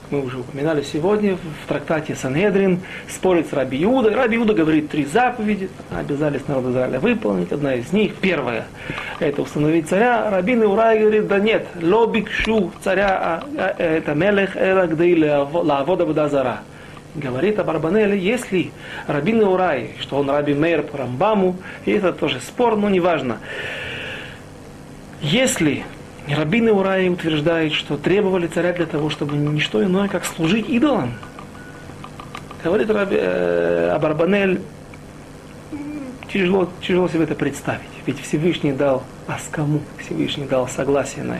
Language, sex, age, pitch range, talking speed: Russian, male, 40-59, 145-195 Hz, 130 wpm